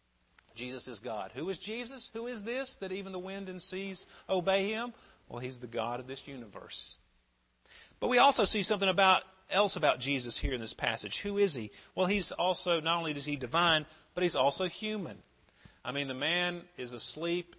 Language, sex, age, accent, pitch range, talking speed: English, male, 40-59, American, 130-190 Hz, 200 wpm